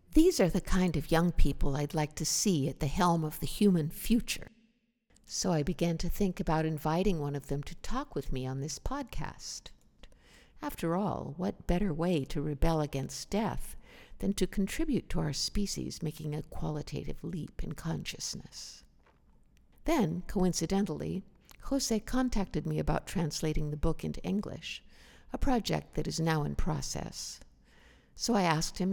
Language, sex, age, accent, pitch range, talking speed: English, female, 60-79, American, 145-200 Hz, 160 wpm